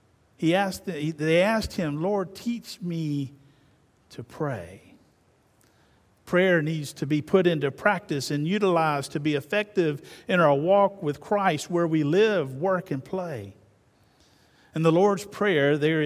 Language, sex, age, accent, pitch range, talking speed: English, male, 50-69, American, 135-190 Hz, 140 wpm